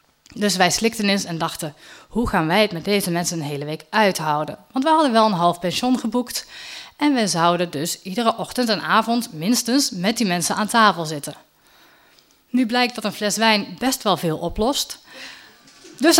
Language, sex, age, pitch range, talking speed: Dutch, female, 20-39, 180-245 Hz, 190 wpm